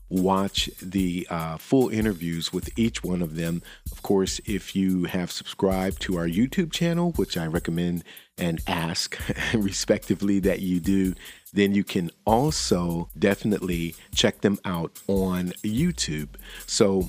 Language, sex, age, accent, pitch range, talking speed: English, male, 40-59, American, 85-100 Hz, 140 wpm